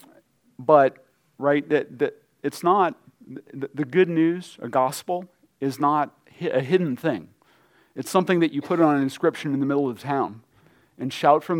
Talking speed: 180 wpm